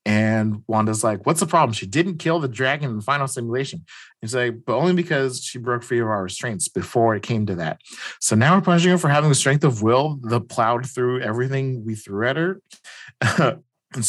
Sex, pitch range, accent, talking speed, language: male, 105-130 Hz, American, 220 wpm, English